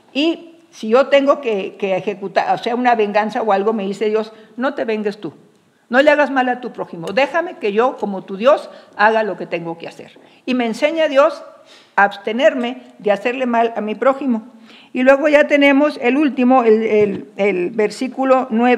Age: 50-69